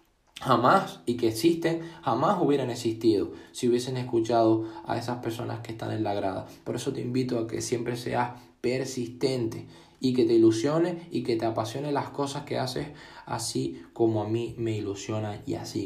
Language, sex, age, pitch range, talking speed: Spanish, male, 20-39, 110-135 Hz, 180 wpm